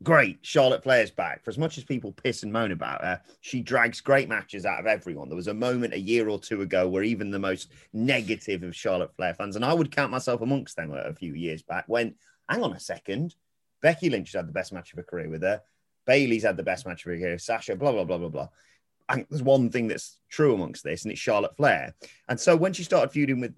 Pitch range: 95-140 Hz